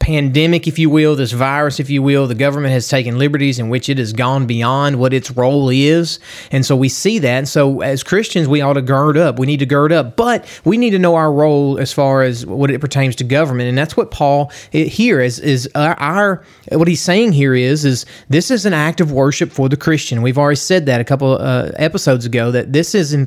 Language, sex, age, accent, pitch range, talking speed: English, male, 30-49, American, 130-160 Hz, 245 wpm